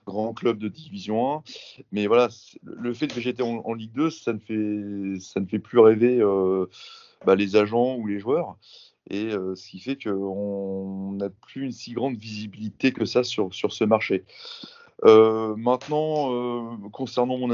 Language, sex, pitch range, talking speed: French, male, 110-140 Hz, 180 wpm